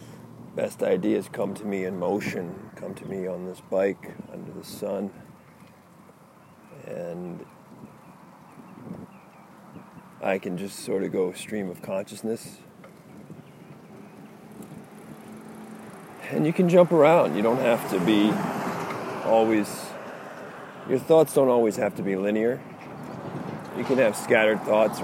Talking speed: 120 wpm